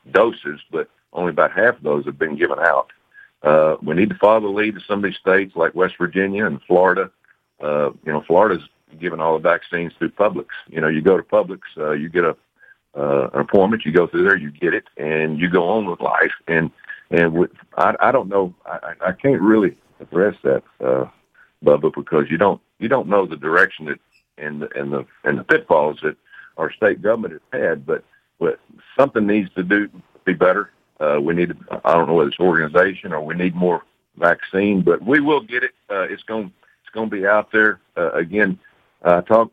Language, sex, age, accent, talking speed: English, male, 60-79, American, 210 wpm